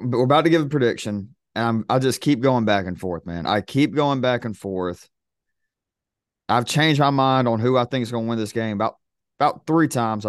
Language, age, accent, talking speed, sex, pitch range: English, 30-49, American, 235 wpm, male, 110-140 Hz